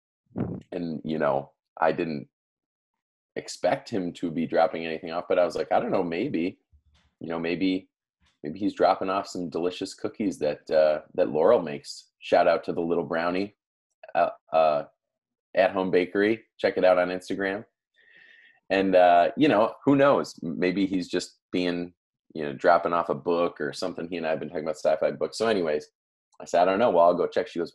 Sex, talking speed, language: male, 195 wpm, English